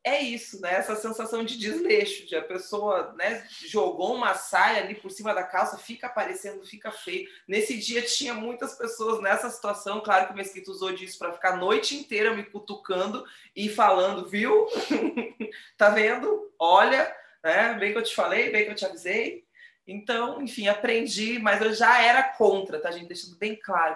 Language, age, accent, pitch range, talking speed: Portuguese, 20-39, Brazilian, 190-240 Hz, 185 wpm